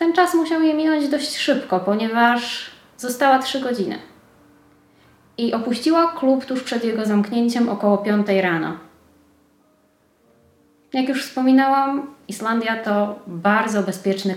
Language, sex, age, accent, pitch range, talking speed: Polish, female, 20-39, native, 195-275 Hz, 115 wpm